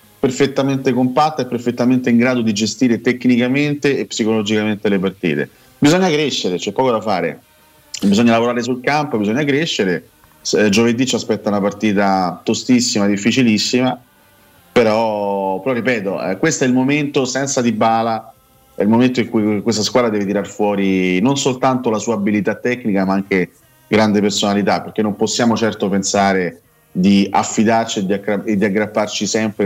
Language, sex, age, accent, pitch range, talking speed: Italian, male, 30-49, native, 105-125 Hz, 150 wpm